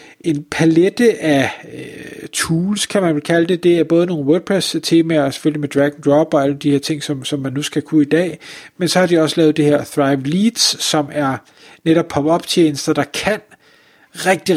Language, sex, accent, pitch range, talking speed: Danish, male, native, 150-185 Hz, 195 wpm